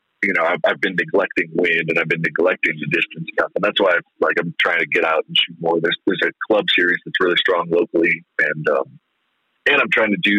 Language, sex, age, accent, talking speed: English, male, 30-49, American, 250 wpm